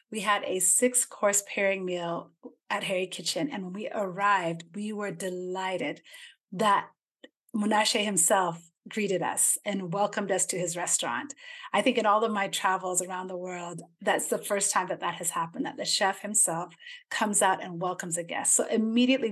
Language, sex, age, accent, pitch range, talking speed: English, female, 30-49, American, 180-245 Hz, 175 wpm